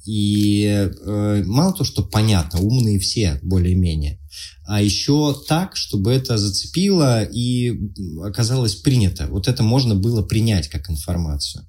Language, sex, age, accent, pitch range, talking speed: Russian, male, 20-39, native, 95-135 Hz, 130 wpm